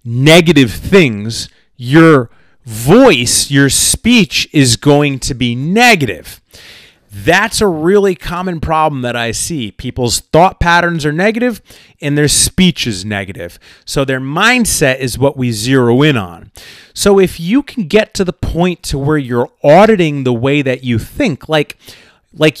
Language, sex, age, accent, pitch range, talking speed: English, male, 30-49, American, 120-175 Hz, 150 wpm